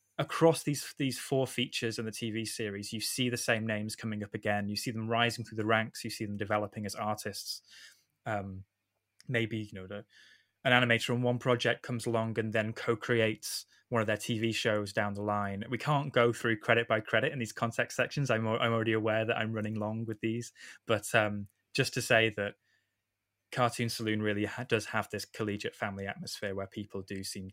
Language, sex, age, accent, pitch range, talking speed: English, male, 10-29, British, 105-120 Hz, 205 wpm